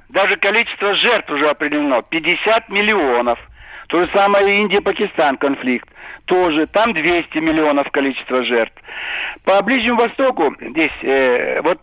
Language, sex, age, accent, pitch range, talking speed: Russian, male, 60-79, native, 155-215 Hz, 125 wpm